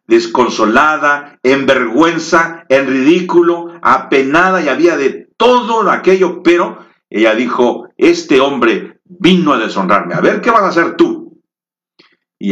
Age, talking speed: 50-69, 130 wpm